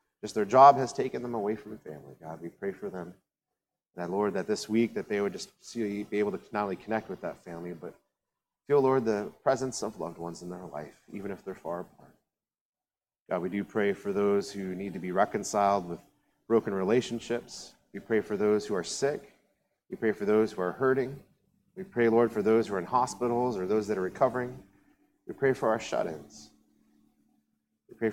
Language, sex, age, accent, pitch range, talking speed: English, male, 30-49, American, 95-120 Hz, 205 wpm